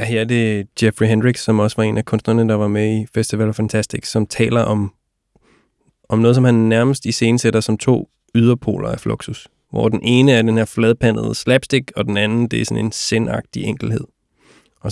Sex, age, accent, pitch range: male, 20-39, native, 105-120 Hz